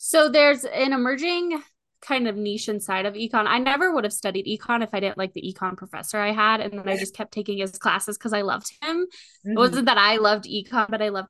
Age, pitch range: 10-29, 200-250 Hz